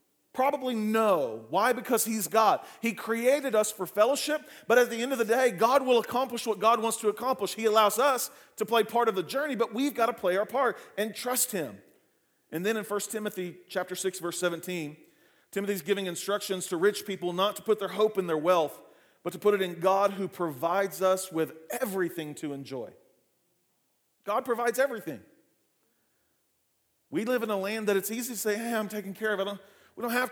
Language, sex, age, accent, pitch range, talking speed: English, male, 40-59, American, 175-225 Hz, 205 wpm